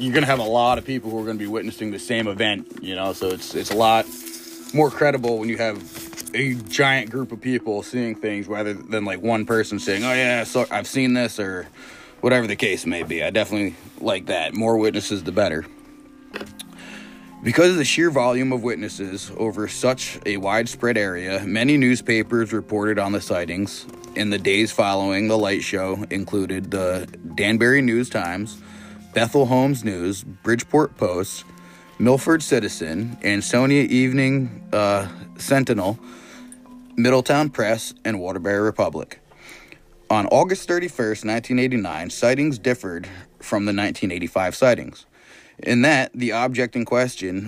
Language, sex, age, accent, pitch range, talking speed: English, male, 20-39, American, 100-125 Hz, 155 wpm